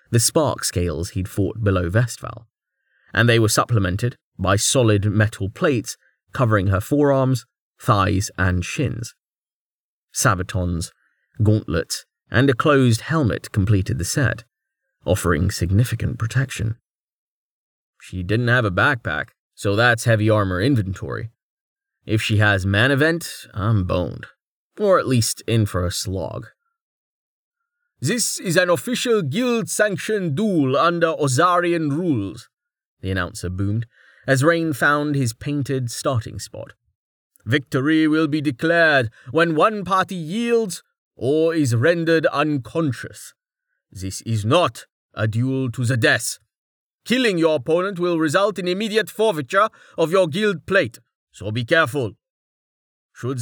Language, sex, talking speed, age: English, male, 125 wpm, 30-49